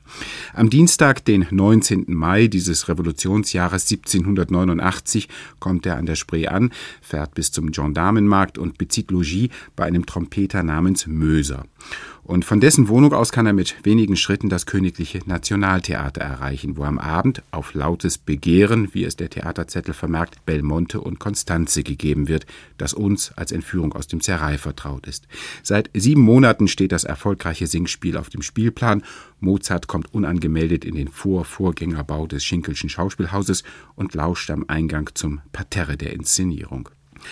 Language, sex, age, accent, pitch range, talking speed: German, male, 50-69, German, 80-100 Hz, 150 wpm